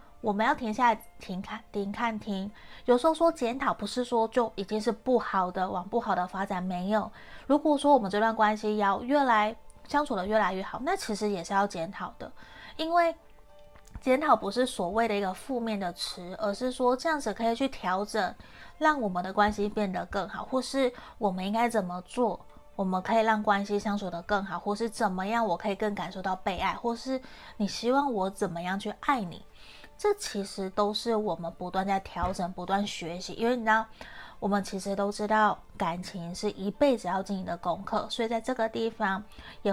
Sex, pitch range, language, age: female, 190-230 Hz, Chinese, 20-39